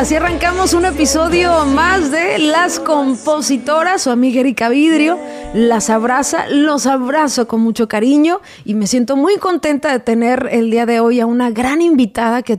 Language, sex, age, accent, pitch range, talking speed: Spanish, female, 30-49, Mexican, 210-265 Hz, 165 wpm